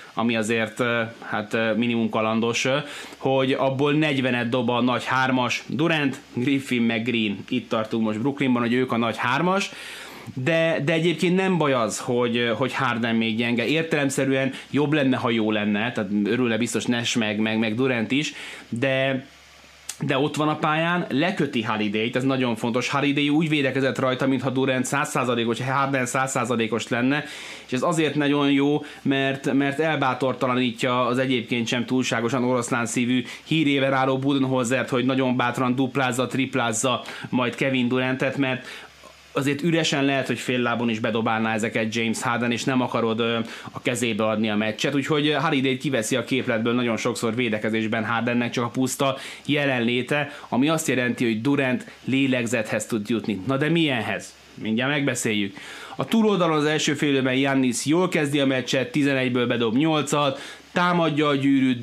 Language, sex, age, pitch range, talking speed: Hungarian, male, 20-39, 120-140 Hz, 155 wpm